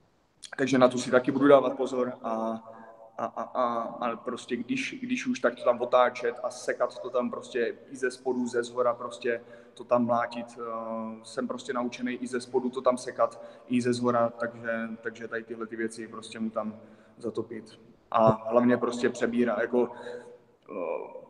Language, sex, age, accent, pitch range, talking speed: Czech, male, 20-39, native, 120-145 Hz, 180 wpm